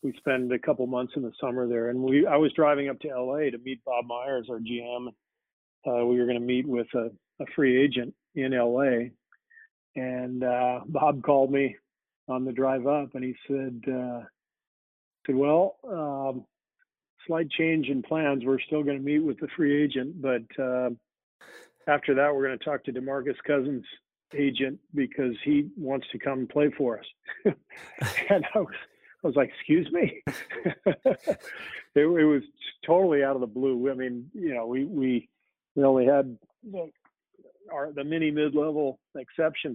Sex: male